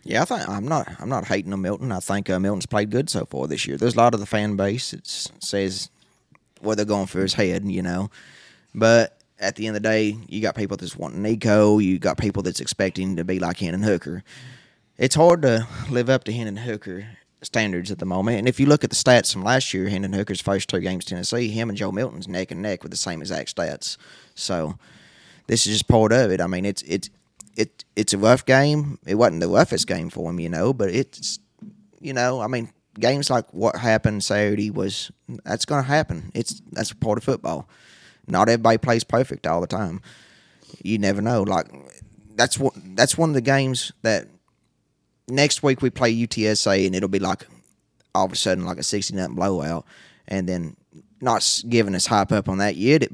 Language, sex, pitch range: English, male, 95-120 Hz